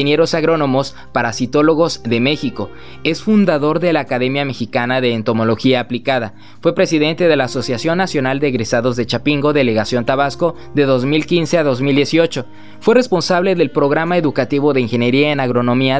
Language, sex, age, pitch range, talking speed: Spanish, male, 20-39, 130-170 Hz, 145 wpm